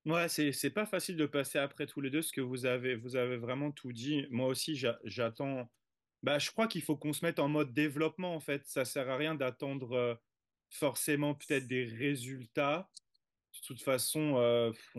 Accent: French